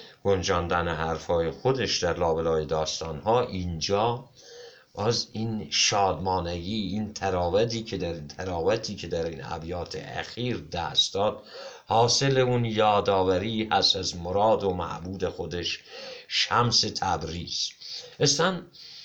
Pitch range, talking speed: 90-135 Hz, 105 wpm